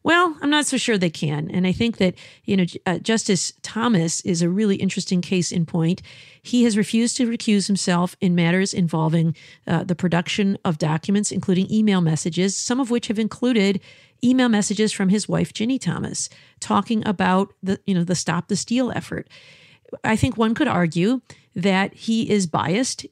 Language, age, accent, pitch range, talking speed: English, 50-69, American, 175-215 Hz, 185 wpm